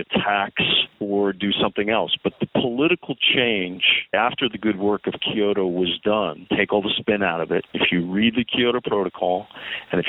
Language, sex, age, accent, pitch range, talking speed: English, male, 40-59, American, 95-110 Hz, 190 wpm